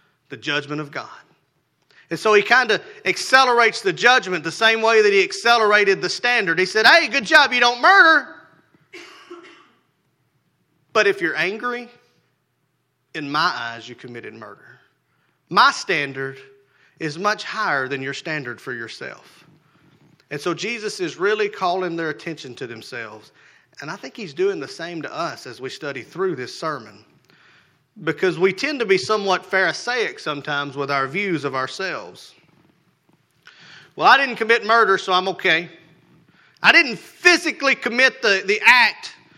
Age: 30-49